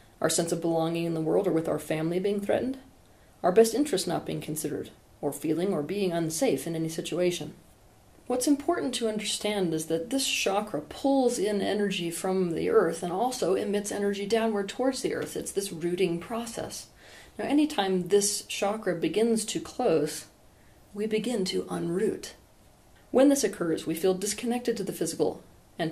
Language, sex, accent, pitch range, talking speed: English, female, American, 165-215 Hz, 170 wpm